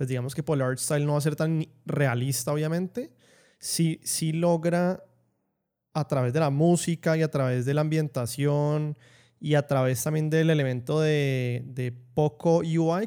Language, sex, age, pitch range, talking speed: English, male, 20-39, 130-155 Hz, 170 wpm